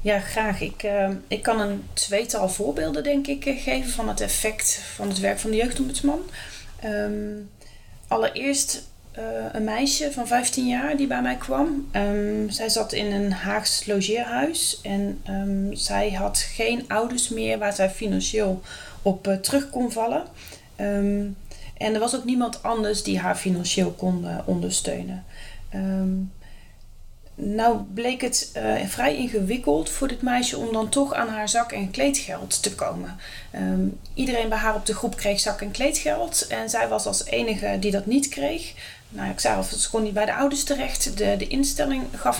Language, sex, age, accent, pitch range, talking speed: Dutch, female, 30-49, Dutch, 195-245 Hz, 165 wpm